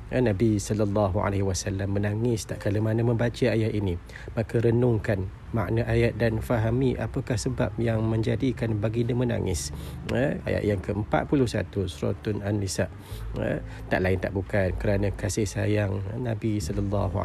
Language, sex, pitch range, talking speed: Malay, male, 100-115 Hz, 135 wpm